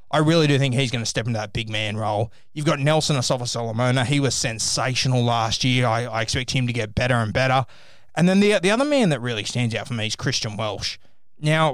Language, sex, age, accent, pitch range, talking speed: English, male, 20-39, Australian, 115-140 Hz, 240 wpm